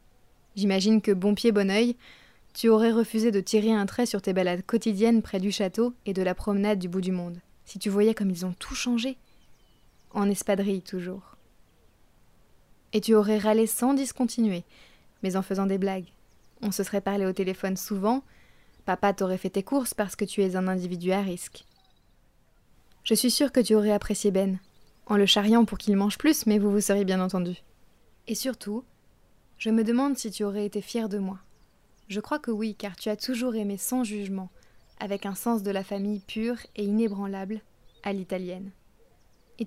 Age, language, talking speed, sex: 20-39, French, 190 wpm, female